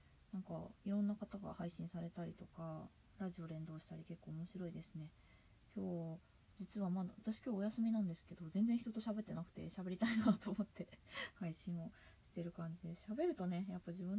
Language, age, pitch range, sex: Japanese, 20-39, 160-210 Hz, female